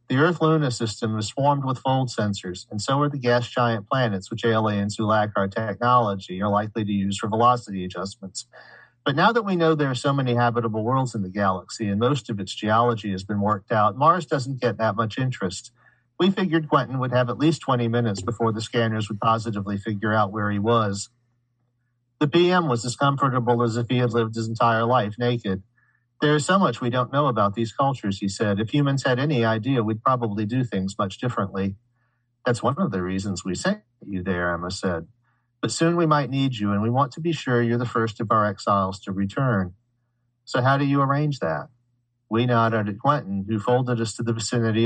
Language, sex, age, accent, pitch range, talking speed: English, male, 40-59, American, 105-125 Hz, 215 wpm